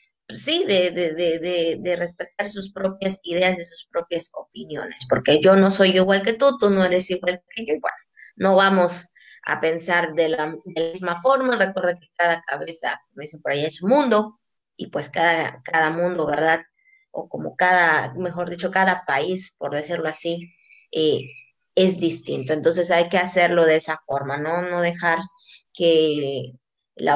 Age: 20-39